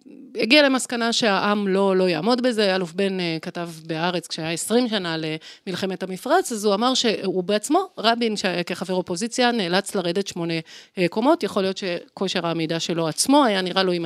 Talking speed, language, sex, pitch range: 160 wpm, Hebrew, female, 165-205 Hz